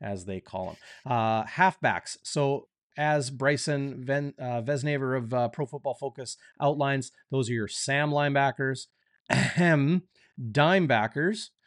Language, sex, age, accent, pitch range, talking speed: English, male, 30-49, American, 120-150 Hz, 125 wpm